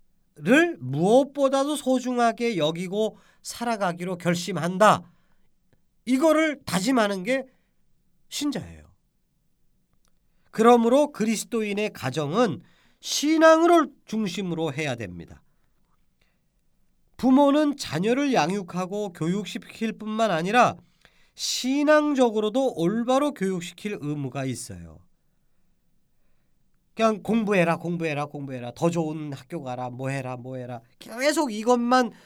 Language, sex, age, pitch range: Korean, male, 40-59, 160-260 Hz